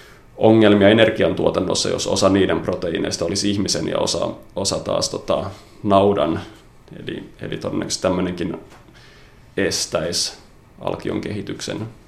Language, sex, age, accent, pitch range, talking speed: Finnish, male, 30-49, native, 100-110 Hz, 105 wpm